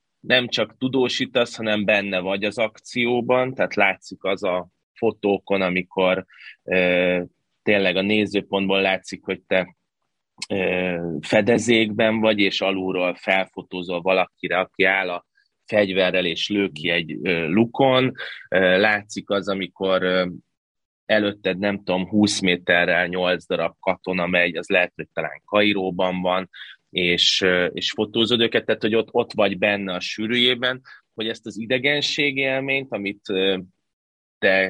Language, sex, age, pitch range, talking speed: Hungarian, male, 30-49, 90-110 Hz, 125 wpm